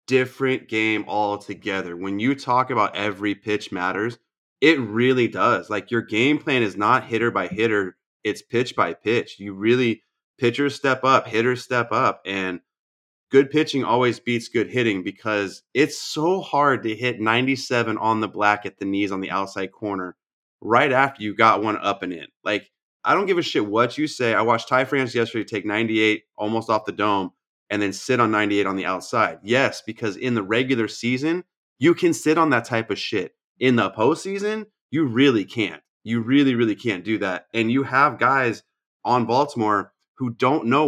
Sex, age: male, 30-49